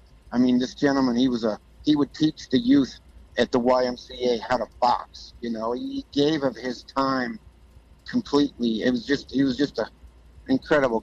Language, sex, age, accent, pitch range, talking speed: English, male, 50-69, American, 110-145 Hz, 185 wpm